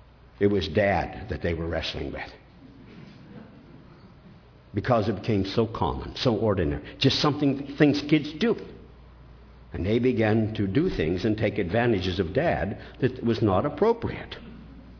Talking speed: 140 wpm